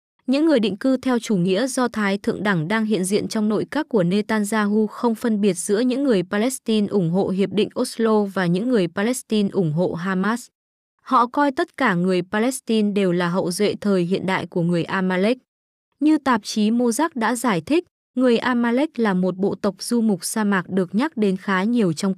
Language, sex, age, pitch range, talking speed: Vietnamese, female, 20-39, 190-245 Hz, 210 wpm